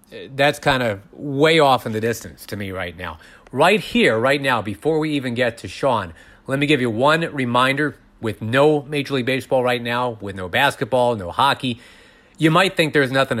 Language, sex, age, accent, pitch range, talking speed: English, male, 40-59, American, 110-145 Hz, 200 wpm